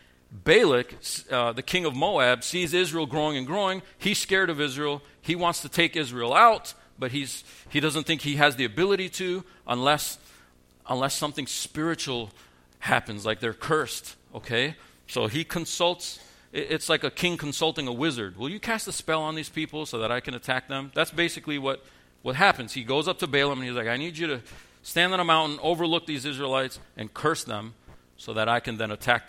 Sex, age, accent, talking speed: male, 40-59, American, 200 wpm